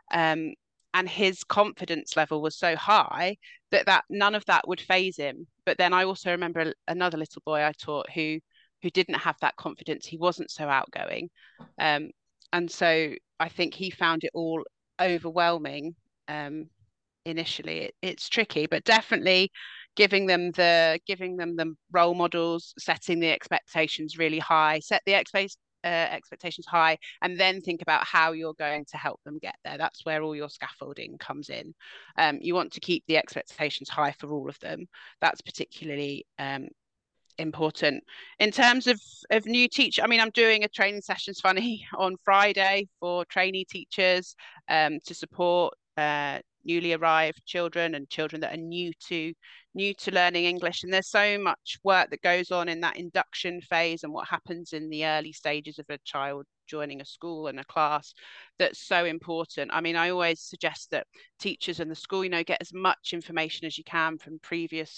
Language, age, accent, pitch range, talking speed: English, 30-49, British, 155-185 Hz, 180 wpm